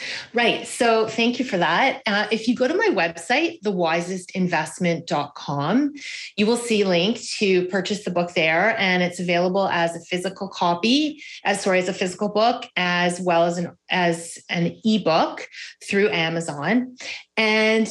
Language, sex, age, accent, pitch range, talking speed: English, female, 30-49, American, 175-225 Hz, 155 wpm